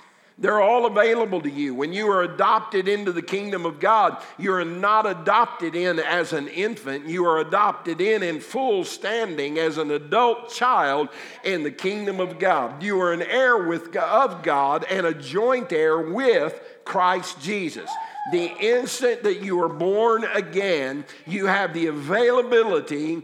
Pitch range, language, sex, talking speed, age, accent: 160-225 Hz, English, male, 160 wpm, 50-69, American